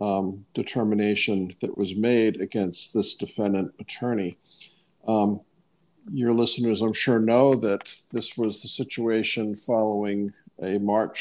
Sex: male